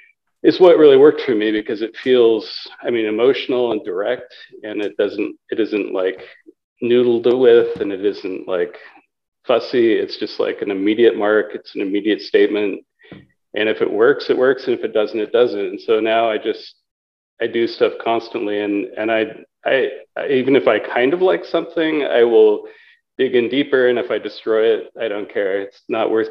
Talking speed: 195 wpm